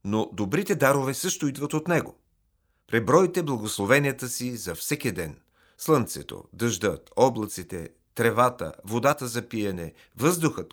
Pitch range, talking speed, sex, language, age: 105-135 Hz, 115 wpm, male, Bulgarian, 40-59